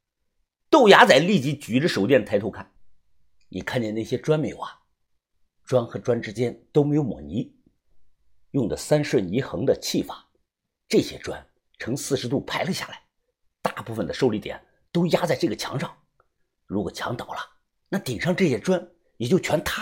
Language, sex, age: Chinese, male, 50-69